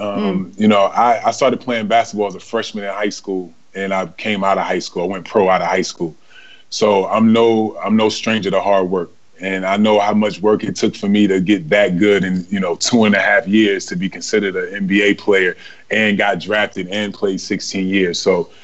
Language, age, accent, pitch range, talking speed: English, 20-39, American, 95-105 Hz, 235 wpm